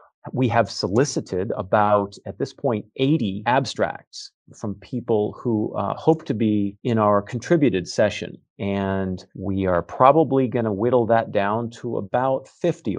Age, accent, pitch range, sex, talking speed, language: 40-59, American, 105-130 Hz, male, 150 wpm, English